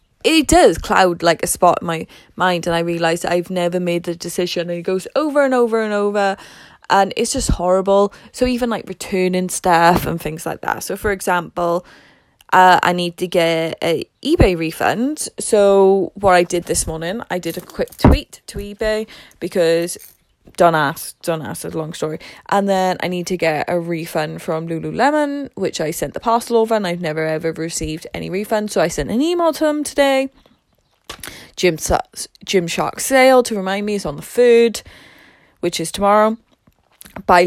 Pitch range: 175-230 Hz